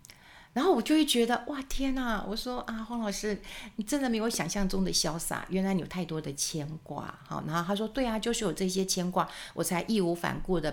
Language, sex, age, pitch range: Chinese, female, 50-69, 160-225 Hz